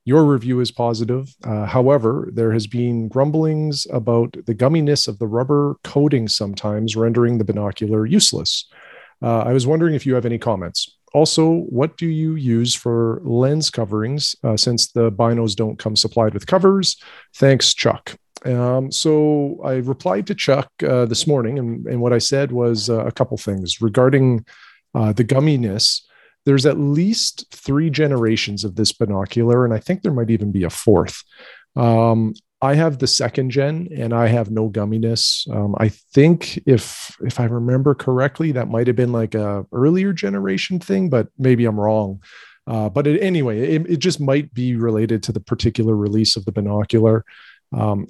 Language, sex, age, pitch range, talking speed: English, male, 40-59, 110-140 Hz, 175 wpm